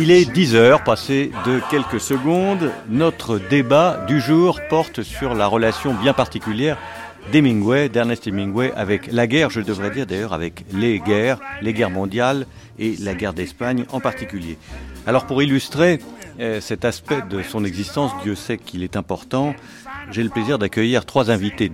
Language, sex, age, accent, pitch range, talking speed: French, male, 50-69, French, 100-130 Hz, 160 wpm